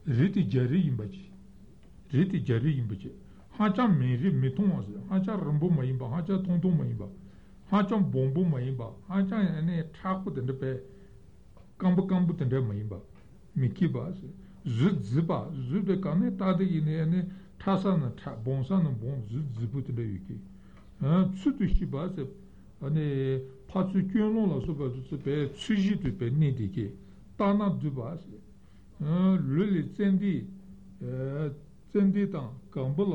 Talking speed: 80 wpm